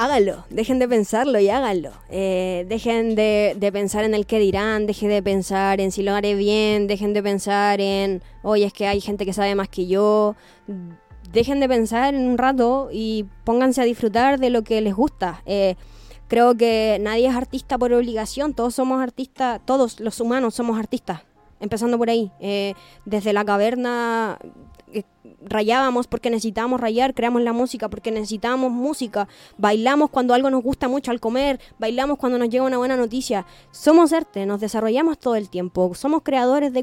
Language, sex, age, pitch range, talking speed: Spanish, female, 20-39, 205-250 Hz, 180 wpm